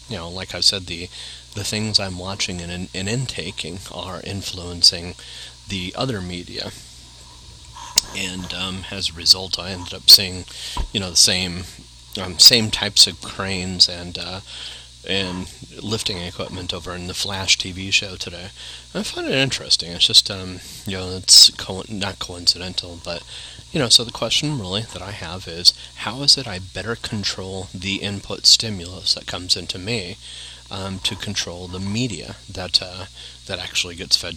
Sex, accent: male, American